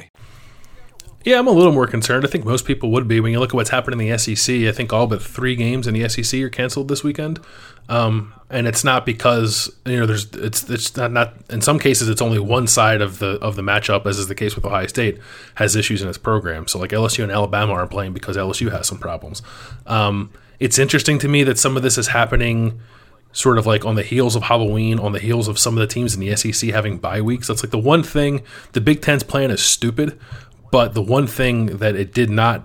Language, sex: English, male